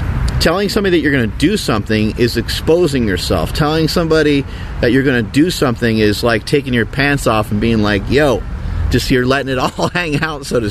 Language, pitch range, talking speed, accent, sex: English, 100-140 Hz, 215 wpm, American, male